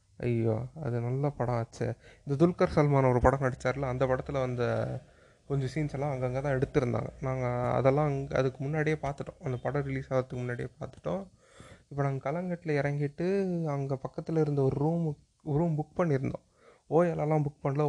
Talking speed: 160 wpm